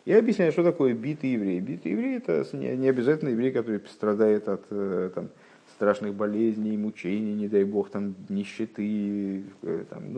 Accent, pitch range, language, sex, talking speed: native, 100-120 Hz, Russian, male, 155 wpm